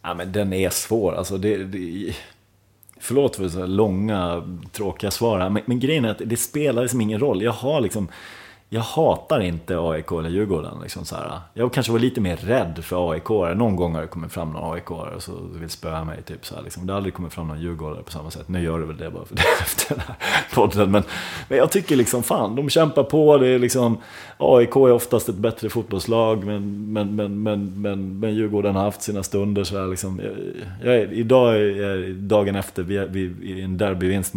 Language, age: English, 30-49